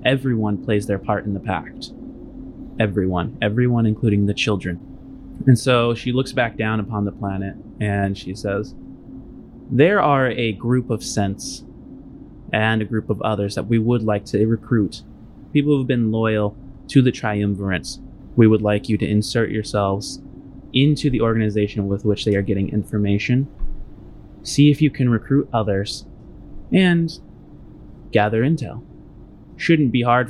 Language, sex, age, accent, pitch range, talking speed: English, male, 20-39, American, 105-125 Hz, 155 wpm